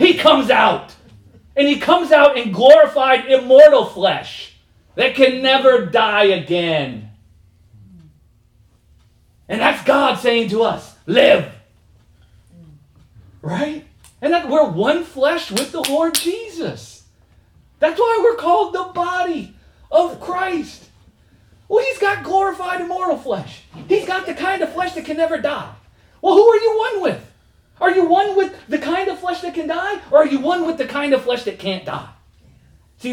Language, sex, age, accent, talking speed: English, male, 40-59, American, 160 wpm